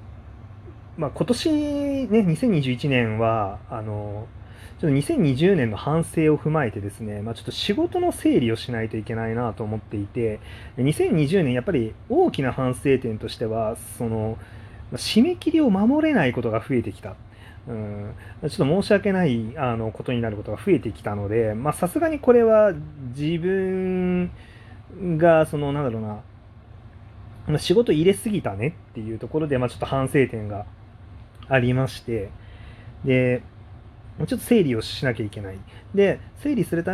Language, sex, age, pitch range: Japanese, male, 30-49, 110-160 Hz